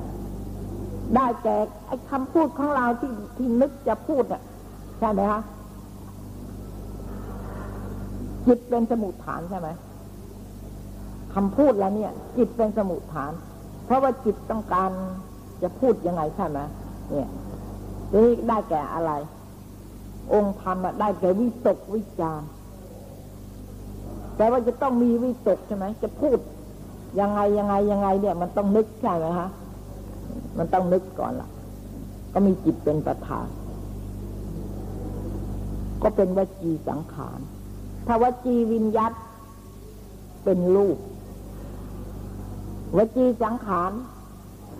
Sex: female